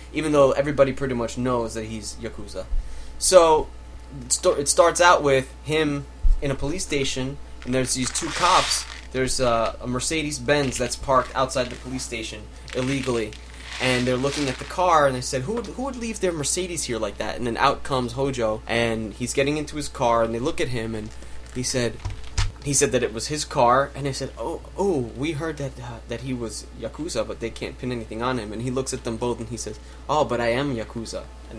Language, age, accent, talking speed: English, 20-39, American, 215 wpm